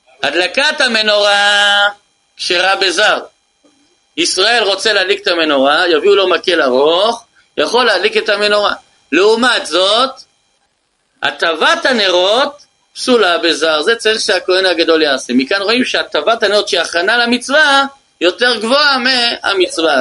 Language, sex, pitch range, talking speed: Hebrew, male, 195-275 Hz, 115 wpm